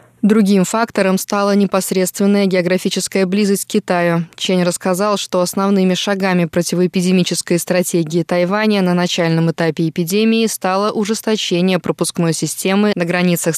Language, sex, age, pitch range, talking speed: Russian, female, 20-39, 175-205 Hz, 115 wpm